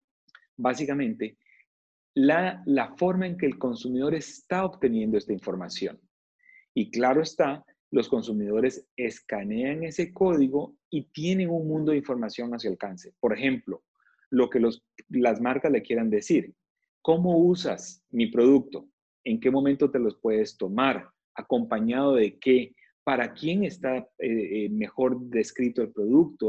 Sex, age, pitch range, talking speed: male, 40-59, 125-185 Hz, 135 wpm